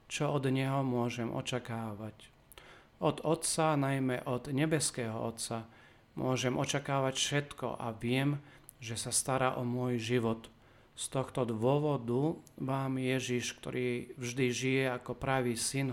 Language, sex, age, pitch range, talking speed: Slovak, male, 40-59, 125-140 Hz, 125 wpm